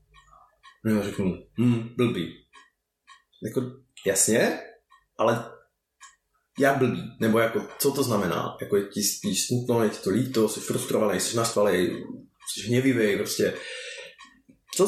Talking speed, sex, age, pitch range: 130 wpm, male, 30-49, 120-140 Hz